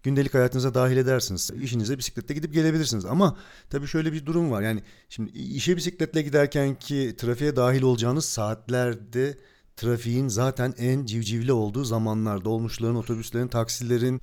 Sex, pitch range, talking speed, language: male, 115-135 Hz, 140 wpm, Turkish